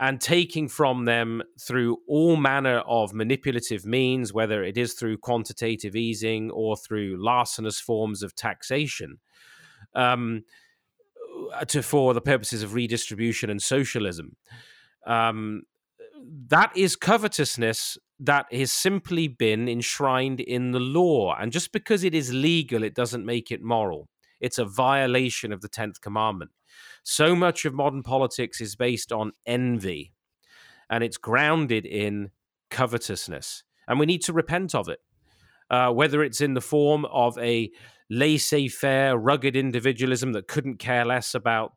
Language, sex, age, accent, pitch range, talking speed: English, male, 30-49, British, 110-140 Hz, 140 wpm